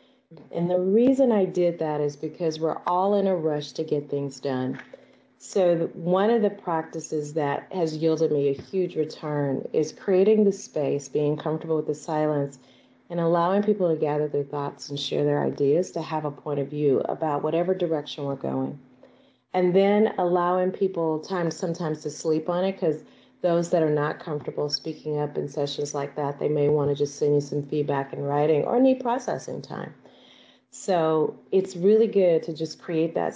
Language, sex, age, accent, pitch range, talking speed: English, female, 30-49, American, 145-175 Hz, 190 wpm